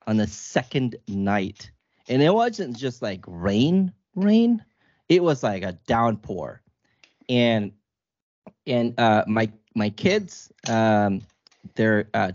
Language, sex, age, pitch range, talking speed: English, male, 30-49, 100-120 Hz, 120 wpm